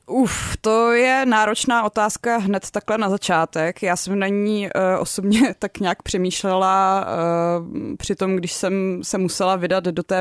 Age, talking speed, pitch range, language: 20-39, 145 wpm, 155-185 Hz, Czech